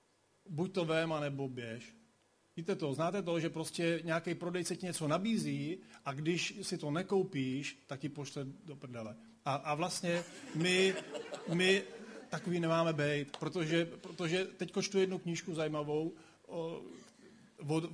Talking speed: 140 wpm